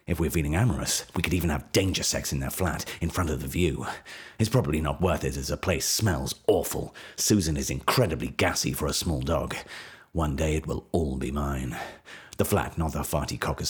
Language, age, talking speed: English, 40-59, 215 wpm